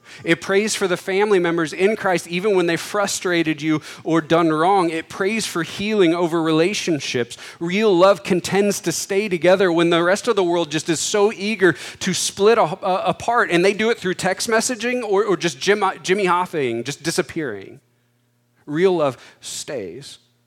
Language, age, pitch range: English, 40-59, 140-185 Hz